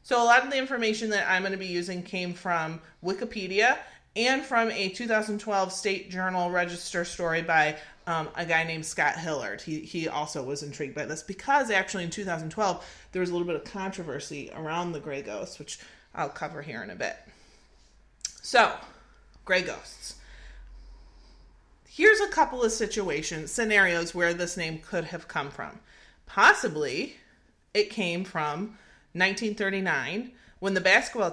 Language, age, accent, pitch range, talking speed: English, 30-49, American, 155-210 Hz, 160 wpm